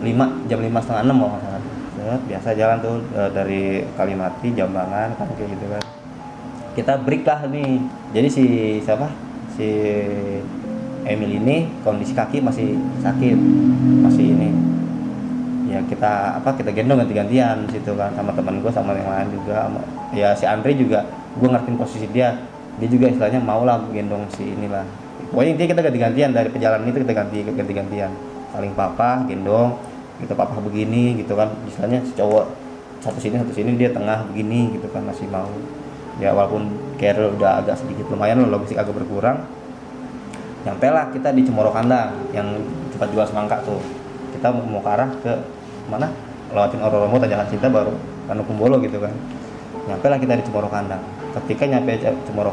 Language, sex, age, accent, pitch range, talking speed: Indonesian, male, 20-39, native, 105-130 Hz, 160 wpm